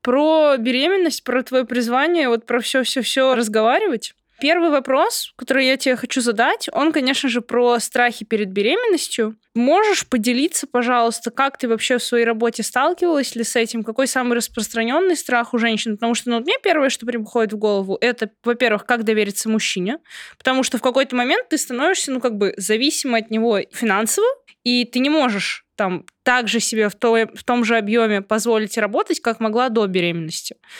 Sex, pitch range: female, 225-295 Hz